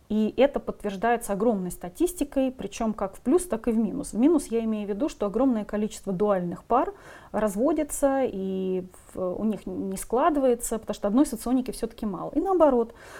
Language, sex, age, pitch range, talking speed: Russian, female, 30-49, 200-255 Hz, 175 wpm